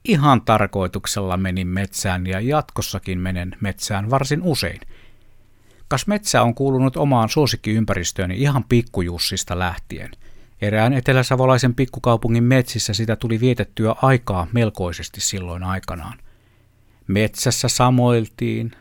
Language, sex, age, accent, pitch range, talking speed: Finnish, male, 60-79, native, 95-120 Hz, 100 wpm